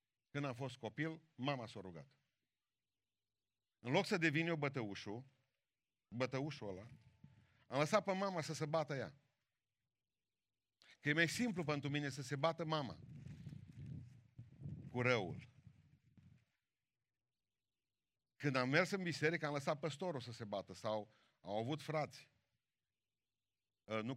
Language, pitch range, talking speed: Romanian, 115-145 Hz, 130 wpm